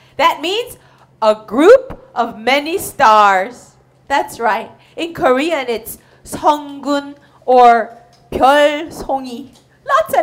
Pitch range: 235-345 Hz